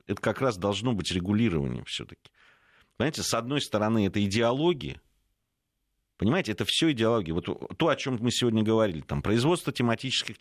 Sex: male